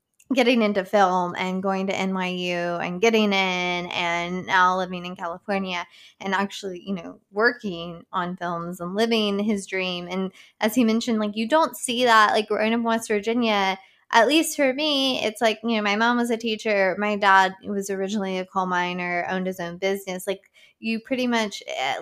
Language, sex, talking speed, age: English, female, 190 wpm, 20-39